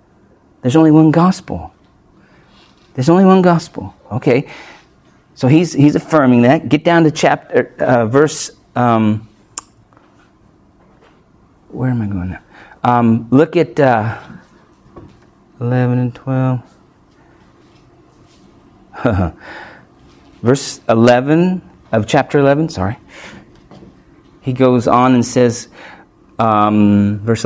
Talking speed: 100 wpm